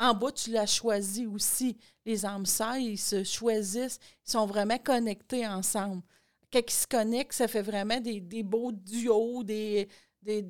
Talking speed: 175 wpm